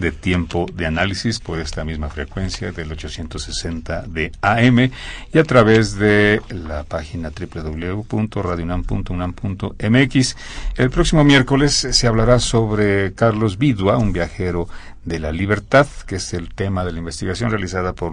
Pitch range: 85-110 Hz